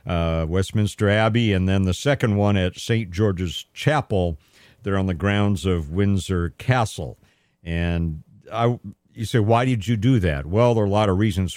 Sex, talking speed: male, 180 wpm